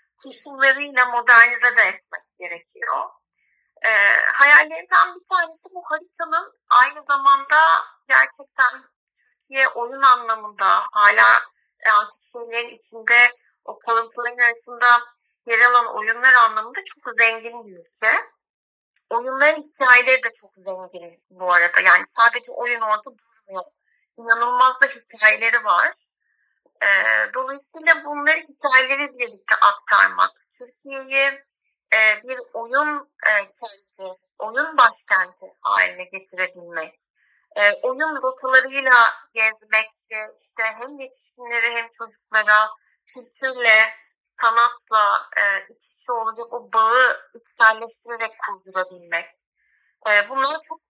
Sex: female